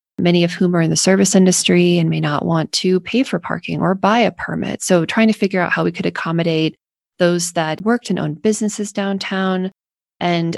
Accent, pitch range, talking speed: American, 165-195 Hz, 210 wpm